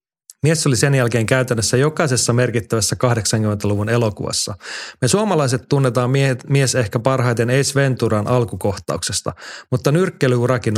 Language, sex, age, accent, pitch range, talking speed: Finnish, male, 30-49, native, 115-140 Hz, 110 wpm